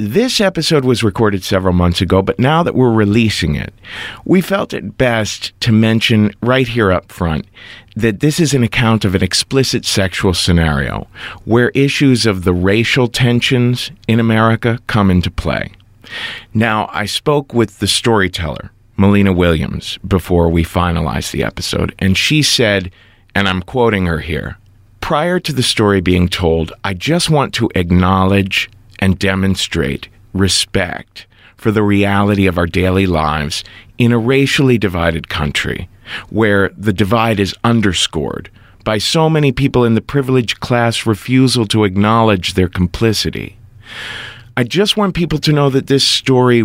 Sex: male